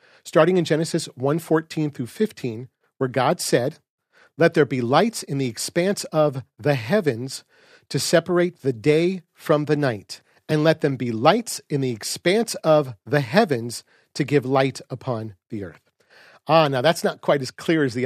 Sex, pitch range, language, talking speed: male, 130-170 Hz, English, 175 wpm